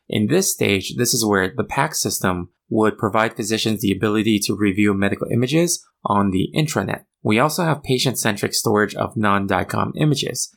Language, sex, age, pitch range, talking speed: English, male, 20-39, 105-130 Hz, 165 wpm